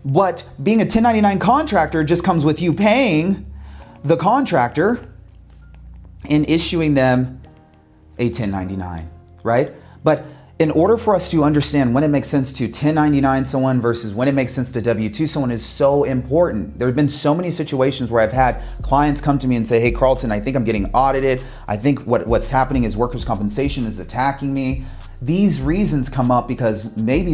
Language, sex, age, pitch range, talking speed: English, male, 30-49, 110-150 Hz, 180 wpm